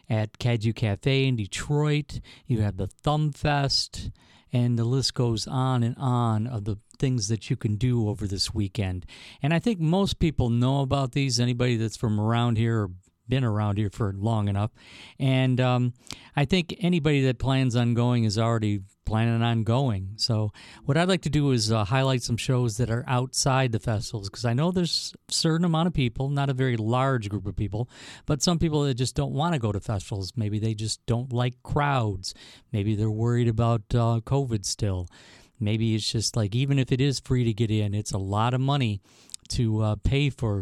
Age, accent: 50-69, American